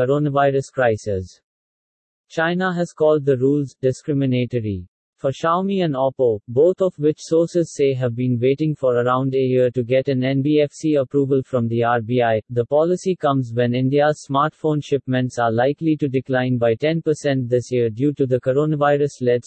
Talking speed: 155 wpm